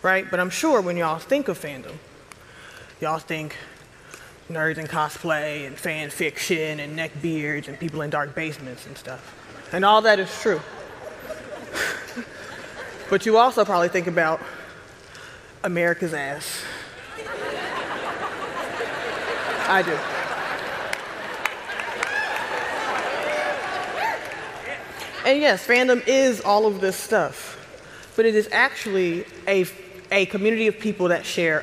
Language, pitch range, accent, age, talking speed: English, 165-210 Hz, American, 20-39, 115 wpm